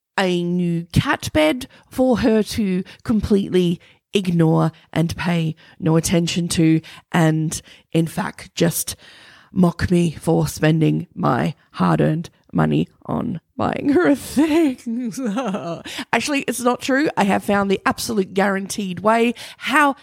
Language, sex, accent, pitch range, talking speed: English, female, Australian, 170-255 Hz, 125 wpm